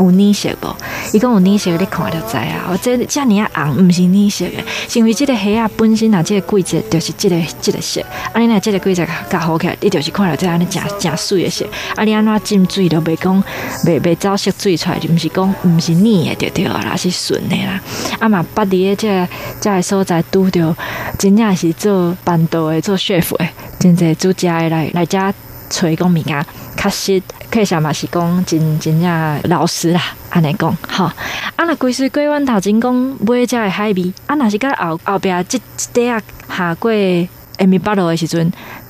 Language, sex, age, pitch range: Chinese, female, 20-39, 170-210 Hz